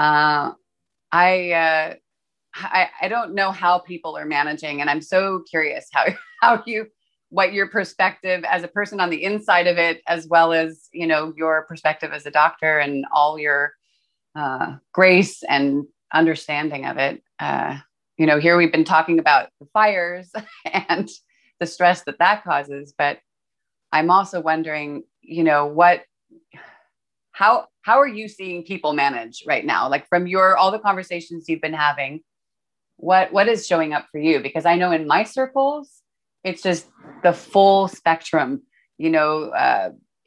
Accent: American